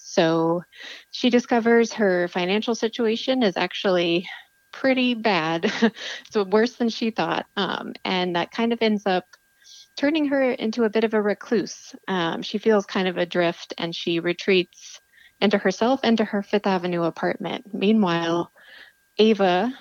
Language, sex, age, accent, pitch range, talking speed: English, female, 30-49, American, 175-220 Hz, 150 wpm